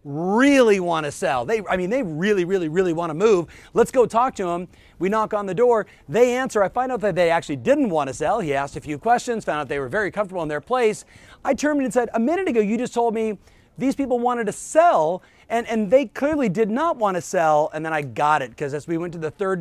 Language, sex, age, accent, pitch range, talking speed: English, male, 30-49, American, 160-230 Hz, 265 wpm